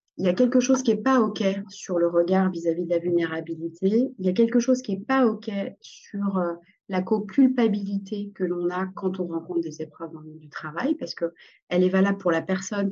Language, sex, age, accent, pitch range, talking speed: French, female, 30-49, French, 175-215 Hz, 225 wpm